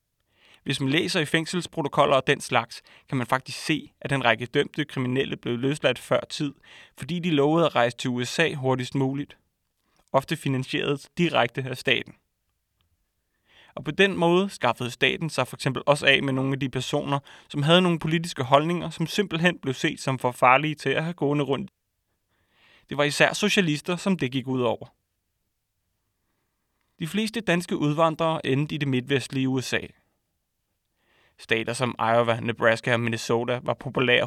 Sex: male